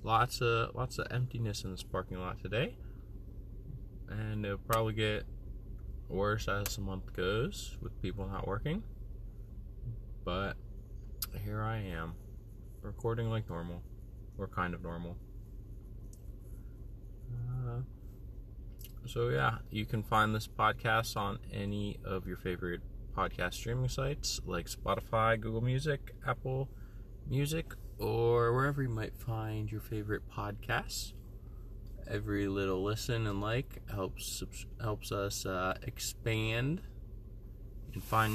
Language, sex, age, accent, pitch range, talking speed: English, male, 20-39, American, 100-115 Hz, 120 wpm